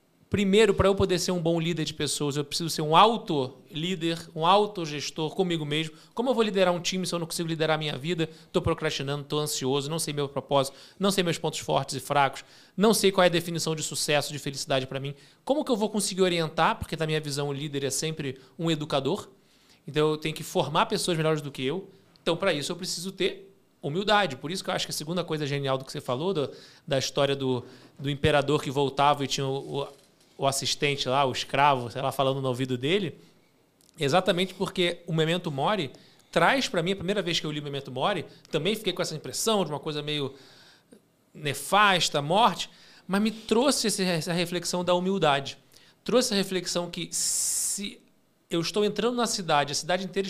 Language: Portuguese